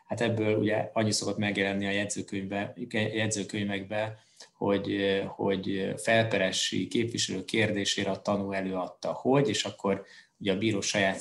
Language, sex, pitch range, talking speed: Hungarian, male, 100-110 Hz, 125 wpm